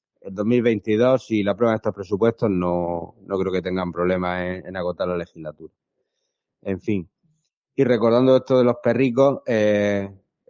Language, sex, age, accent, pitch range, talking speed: Spanish, male, 30-49, Spanish, 105-130 Hz, 165 wpm